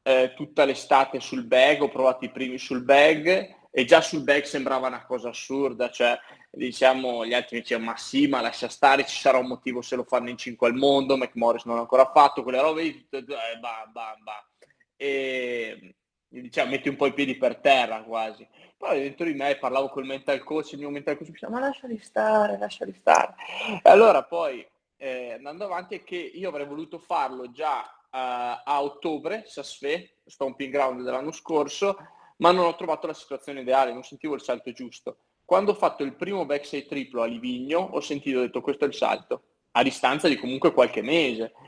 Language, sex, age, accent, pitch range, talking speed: Italian, male, 20-39, native, 120-150 Hz, 195 wpm